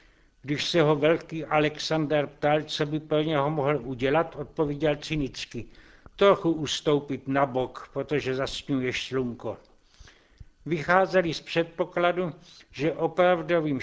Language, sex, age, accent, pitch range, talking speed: Czech, male, 60-79, native, 145-170 Hz, 115 wpm